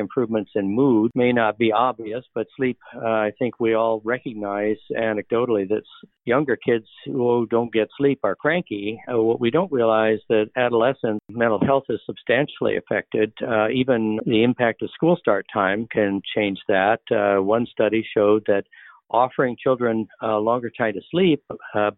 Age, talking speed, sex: 60-79, 165 wpm, male